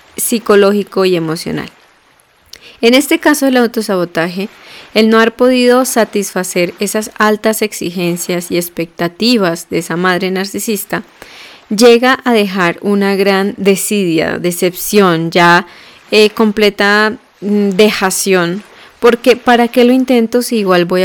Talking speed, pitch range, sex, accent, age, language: 115 wpm, 180-220 Hz, female, Colombian, 20-39, Spanish